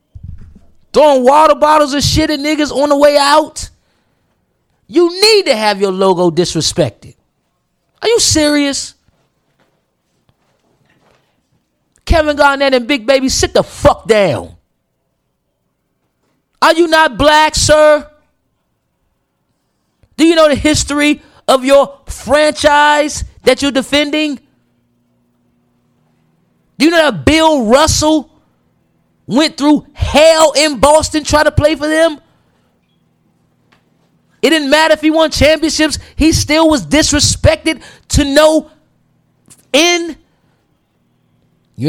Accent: American